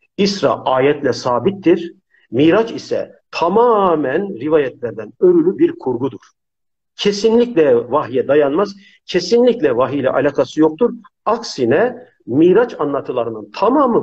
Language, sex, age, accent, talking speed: Turkish, male, 50-69, native, 90 wpm